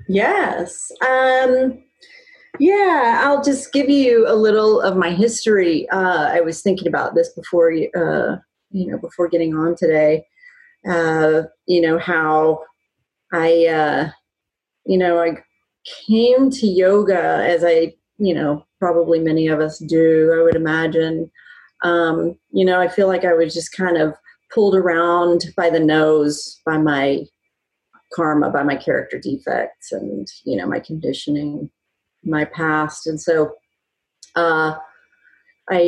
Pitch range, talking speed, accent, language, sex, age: 160-205 Hz, 140 wpm, American, English, female, 30-49